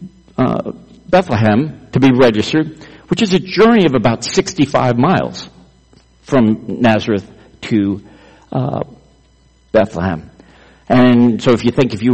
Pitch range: 115-145 Hz